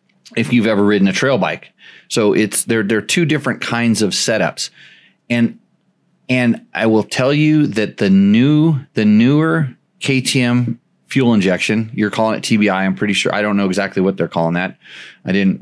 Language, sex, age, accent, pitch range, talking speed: English, male, 30-49, American, 100-125 Hz, 185 wpm